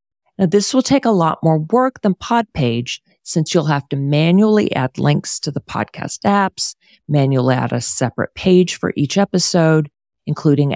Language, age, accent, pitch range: English, 40-59, American, 130-180 Hz